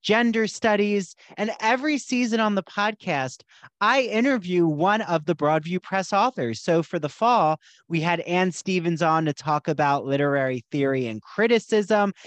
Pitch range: 155-220 Hz